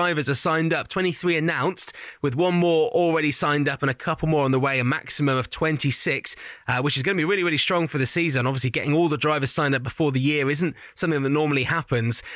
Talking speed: 245 wpm